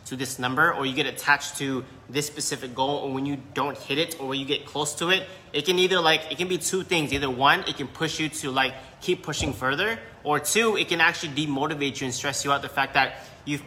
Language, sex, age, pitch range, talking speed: English, male, 20-39, 130-150 Hz, 260 wpm